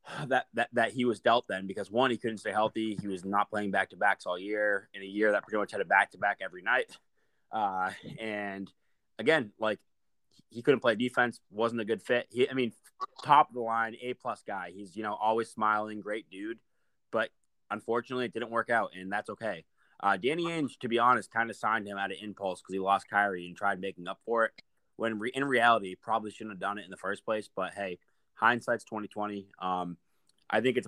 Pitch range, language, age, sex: 100-120 Hz, English, 20-39, male